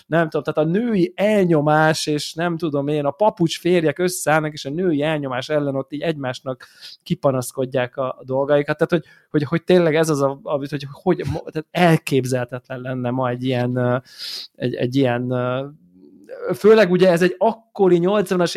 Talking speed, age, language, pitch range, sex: 155 wpm, 20-39, Hungarian, 135-170 Hz, male